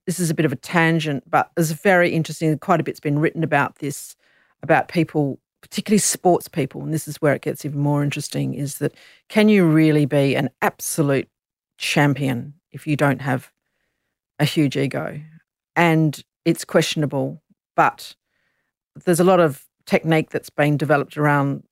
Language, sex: English, female